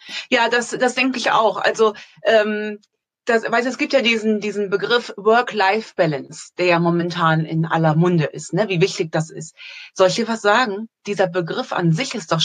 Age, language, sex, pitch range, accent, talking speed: 30-49, German, female, 185-250 Hz, German, 190 wpm